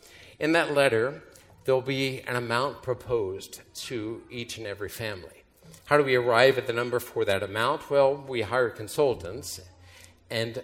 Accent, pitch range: American, 100-135 Hz